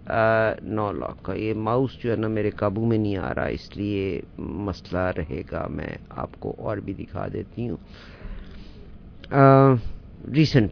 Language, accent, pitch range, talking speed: English, Indian, 100-130 Hz, 80 wpm